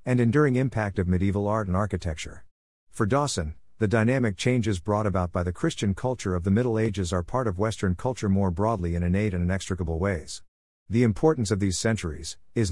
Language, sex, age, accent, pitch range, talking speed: English, male, 50-69, American, 90-115 Hz, 195 wpm